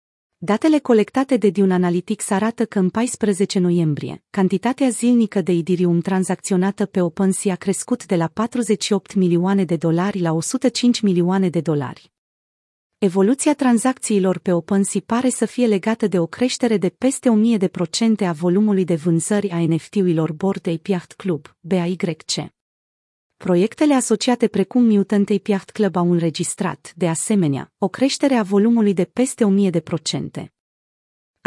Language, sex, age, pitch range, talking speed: Romanian, female, 30-49, 180-220 Hz, 135 wpm